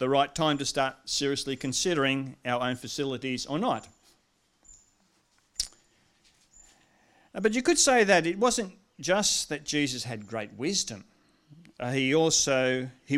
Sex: male